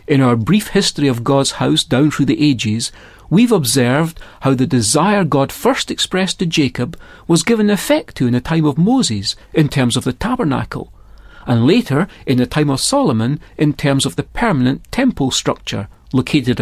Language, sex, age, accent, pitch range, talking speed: English, male, 40-59, British, 120-175 Hz, 180 wpm